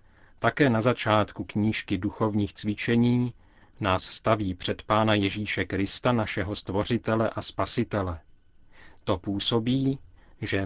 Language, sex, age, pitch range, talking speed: Czech, male, 40-59, 95-115 Hz, 105 wpm